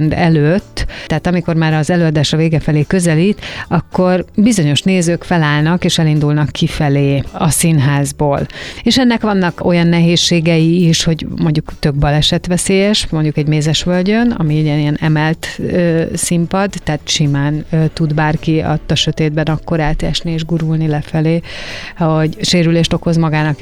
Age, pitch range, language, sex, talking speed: 30-49, 155-185 Hz, Hungarian, female, 145 wpm